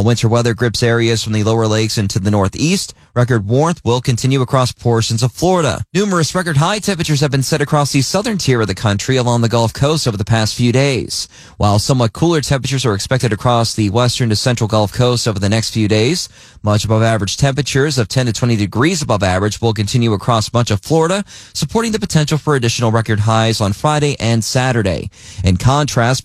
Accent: American